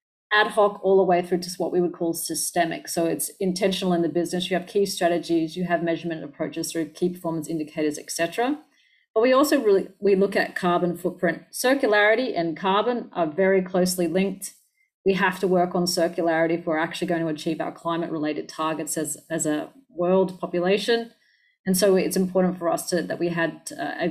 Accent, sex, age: Australian, female, 30-49